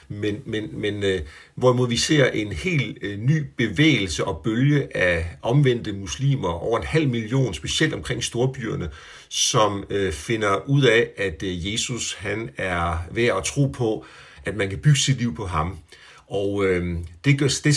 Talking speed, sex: 150 wpm, male